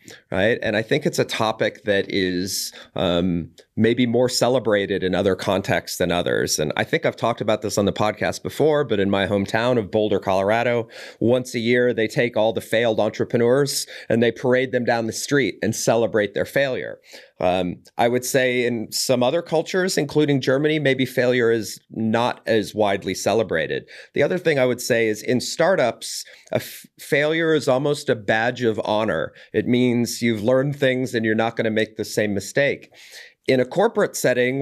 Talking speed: 190 wpm